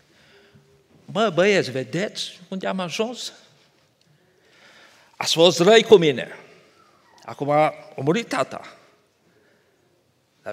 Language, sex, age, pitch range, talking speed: Romanian, male, 50-69, 150-245 Hz, 95 wpm